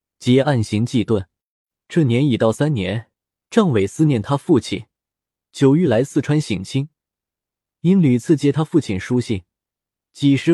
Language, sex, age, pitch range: Chinese, male, 20-39, 110-160 Hz